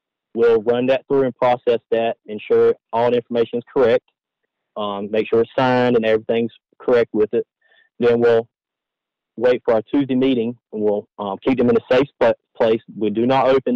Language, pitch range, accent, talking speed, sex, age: English, 110-145 Hz, American, 190 wpm, male, 30-49